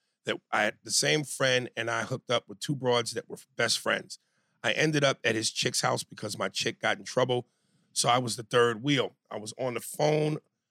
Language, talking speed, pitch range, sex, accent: English, 230 wpm, 115-135 Hz, male, American